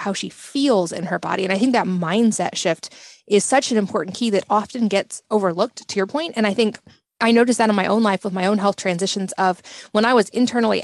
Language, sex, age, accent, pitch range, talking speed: English, female, 20-39, American, 195-230 Hz, 245 wpm